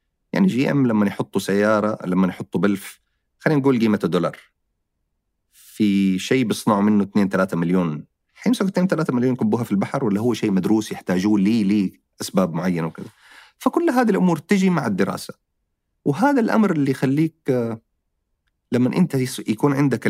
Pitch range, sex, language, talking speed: 95-140 Hz, male, Arabic, 150 wpm